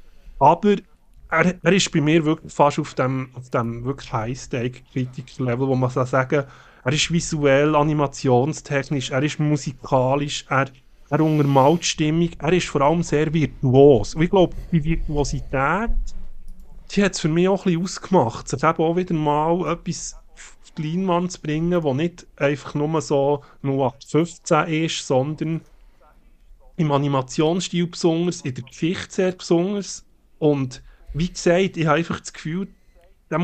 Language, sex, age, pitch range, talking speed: German, male, 30-49, 135-170 Hz, 145 wpm